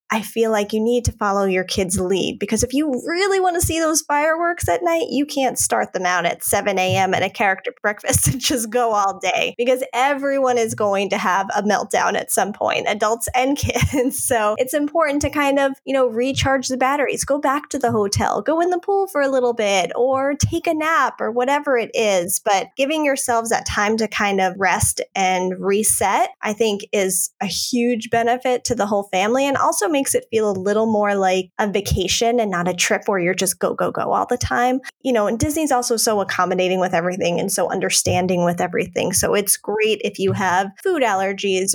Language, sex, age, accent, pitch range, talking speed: English, female, 10-29, American, 195-270 Hz, 215 wpm